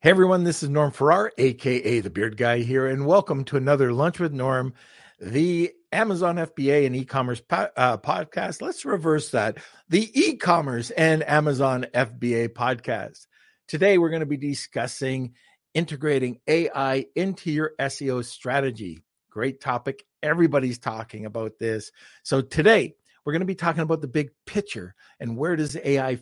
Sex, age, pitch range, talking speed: male, 50-69, 125-160 Hz, 155 wpm